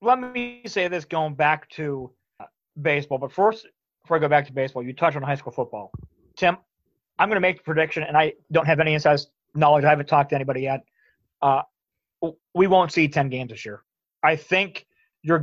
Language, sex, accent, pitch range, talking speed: English, male, American, 150-180 Hz, 205 wpm